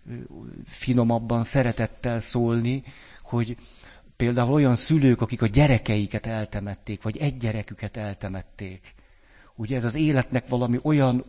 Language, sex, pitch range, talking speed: Hungarian, male, 105-130 Hz, 110 wpm